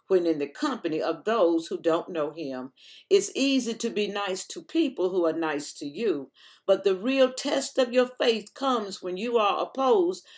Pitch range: 180-245 Hz